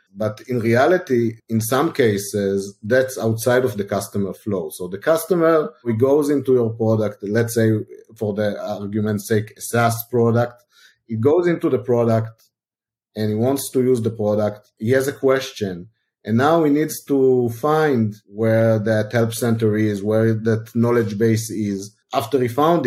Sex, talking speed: male, 170 wpm